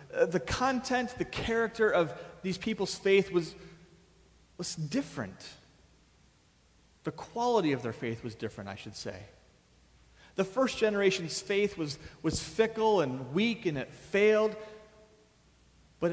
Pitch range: 120-200 Hz